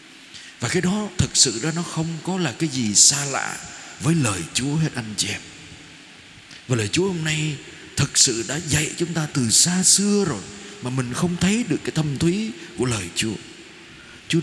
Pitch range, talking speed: 125-170 Hz, 200 wpm